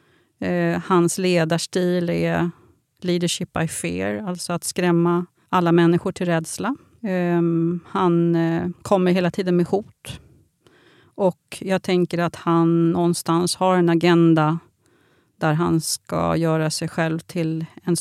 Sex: female